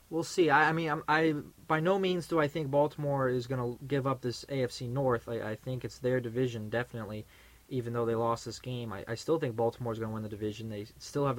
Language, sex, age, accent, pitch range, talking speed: English, male, 20-39, American, 110-135 Hz, 255 wpm